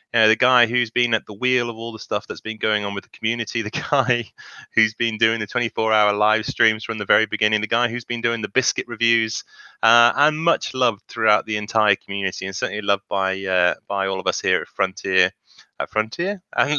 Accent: British